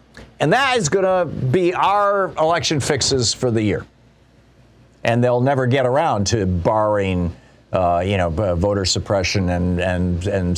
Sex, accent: male, American